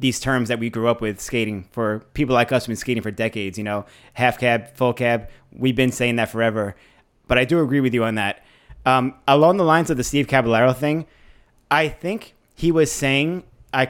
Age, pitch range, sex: 30-49, 115-135 Hz, male